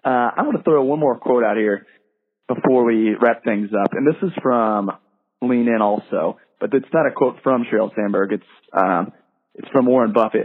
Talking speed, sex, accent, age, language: 200 wpm, male, American, 30-49, English